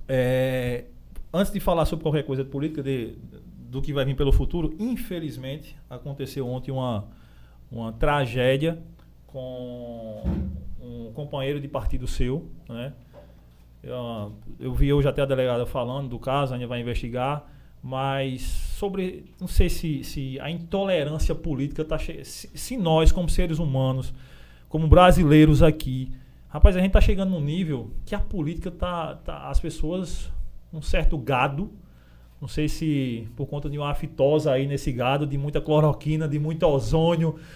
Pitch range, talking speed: 130-175 Hz, 150 wpm